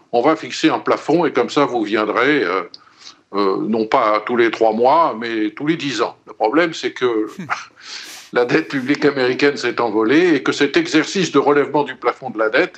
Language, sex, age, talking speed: French, male, 50-69, 205 wpm